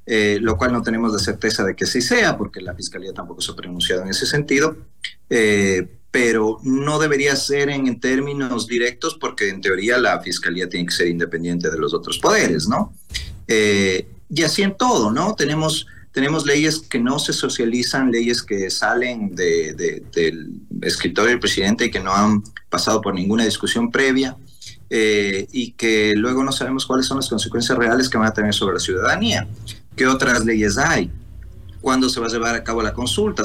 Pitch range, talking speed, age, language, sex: 100-135 Hz, 185 wpm, 30-49, Spanish, male